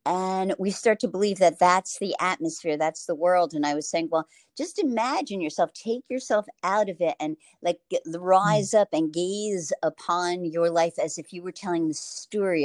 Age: 50-69